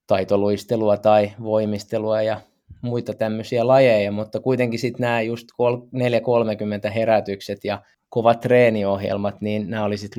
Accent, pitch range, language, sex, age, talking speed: native, 100-115 Hz, Finnish, male, 20-39, 120 wpm